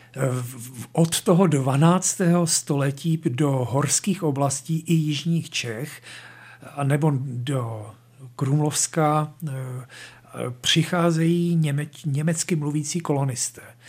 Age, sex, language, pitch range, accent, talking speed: 50-69, male, Czech, 130-165 Hz, native, 75 wpm